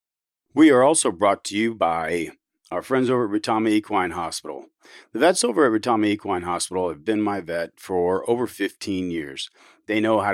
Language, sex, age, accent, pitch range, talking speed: English, male, 40-59, American, 105-145 Hz, 185 wpm